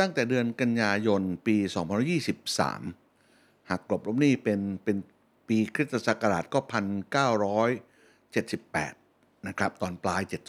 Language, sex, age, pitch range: Thai, male, 60-79, 110-150 Hz